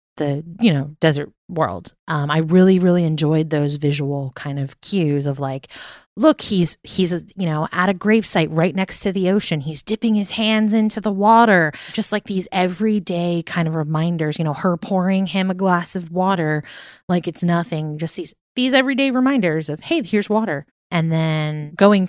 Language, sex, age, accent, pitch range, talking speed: English, female, 20-39, American, 155-200 Hz, 185 wpm